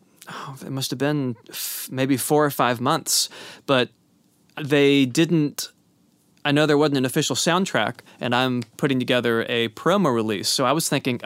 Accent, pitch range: American, 125-160 Hz